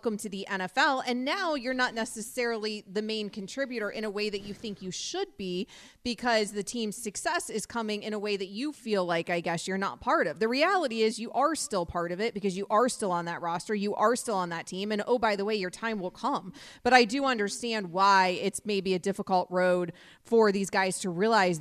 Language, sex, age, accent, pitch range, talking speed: English, female, 30-49, American, 190-225 Hz, 240 wpm